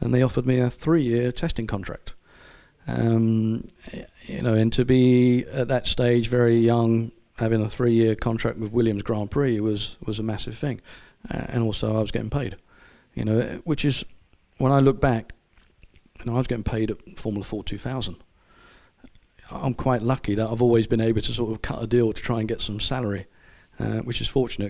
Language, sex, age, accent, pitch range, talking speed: English, male, 40-59, British, 105-125 Hz, 195 wpm